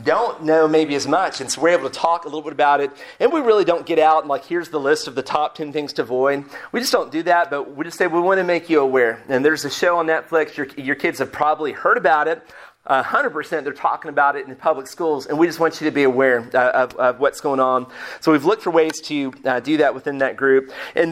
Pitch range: 145-175 Hz